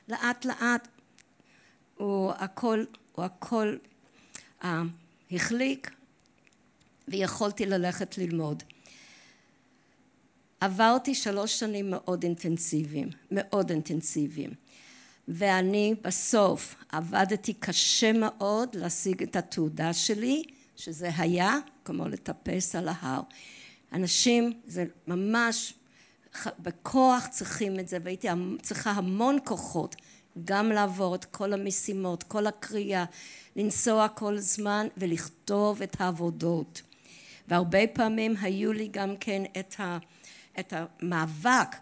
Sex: female